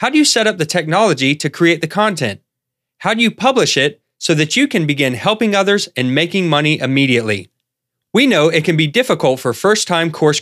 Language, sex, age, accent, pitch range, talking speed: English, male, 30-49, American, 130-185 Hz, 205 wpm